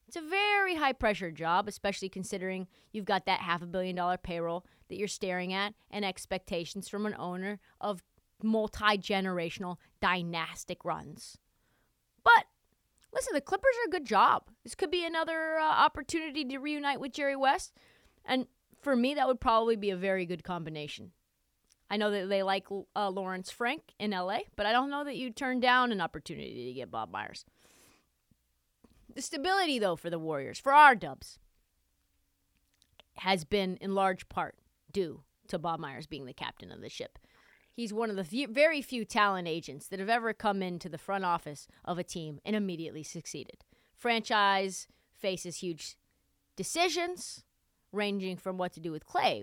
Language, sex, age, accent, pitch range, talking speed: English, female, 30-49, American, 175-255 Hz, 165 wpm